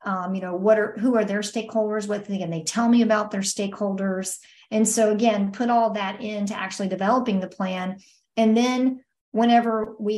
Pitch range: 195-230 Hz